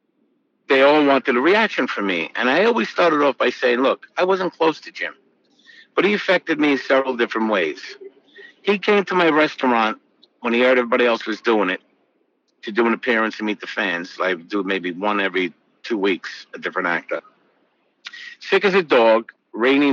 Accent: American